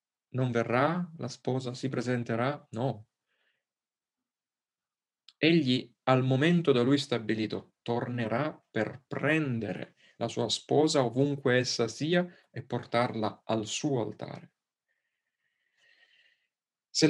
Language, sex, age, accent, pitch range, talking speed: Italian, male, 30-49, native, 115-145 Hz, 100 wpm